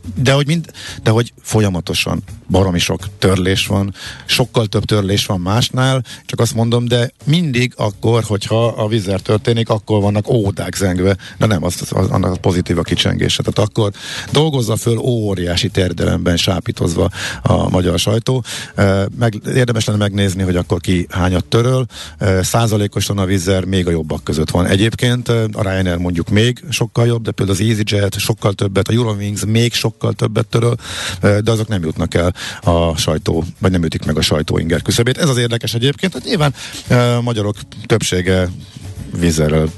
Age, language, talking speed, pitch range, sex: 50-69, Hungarian, 165 wpm, 95-115 Hz, male